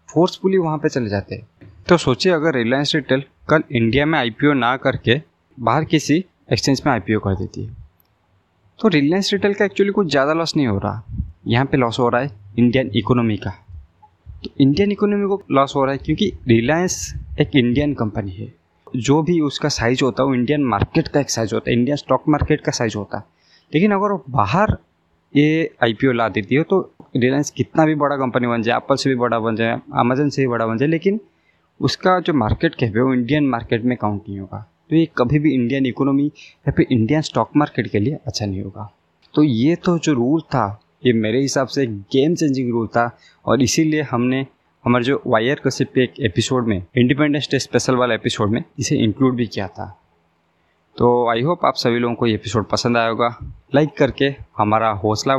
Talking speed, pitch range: 205 wpm, 110-145 Hz